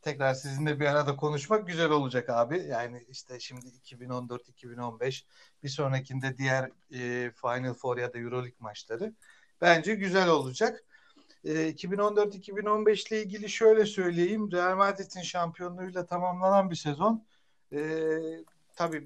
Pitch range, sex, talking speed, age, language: 135-175 Hz, male, 125 wpm, 60-79, Turkish